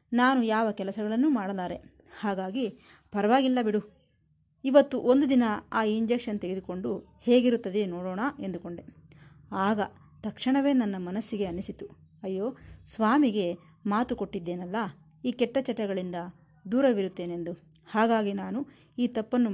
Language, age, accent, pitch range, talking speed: Kannada, 20-39, native, 185-250 Hz, 100 wpm